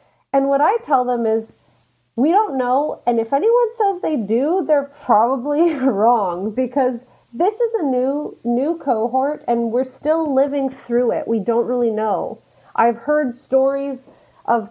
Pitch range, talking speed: 225-280 Hz, 160 wpm